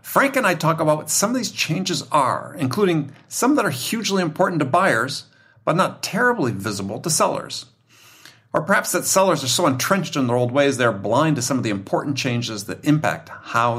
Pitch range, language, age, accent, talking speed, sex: 120-175 Hz, English, 50-69, American, 205 wpm, male